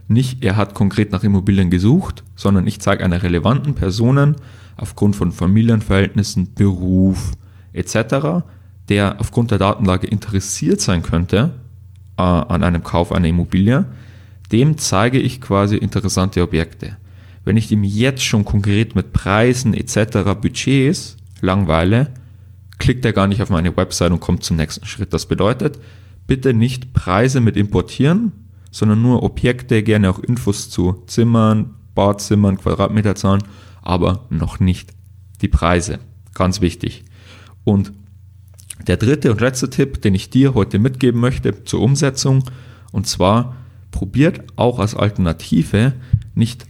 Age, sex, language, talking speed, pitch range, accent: 30-49, male, German, 135 wpm, 95-120 Hz, German